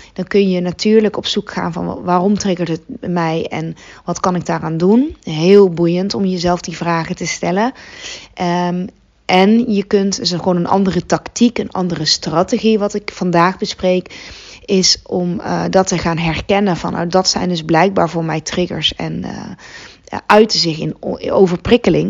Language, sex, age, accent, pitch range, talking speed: Dutch, female, 20-39, Dutch, 170-205 Hz, 175 wpm